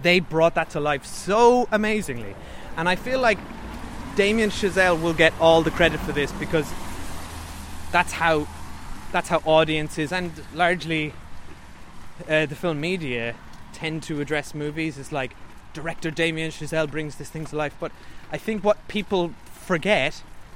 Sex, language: male, English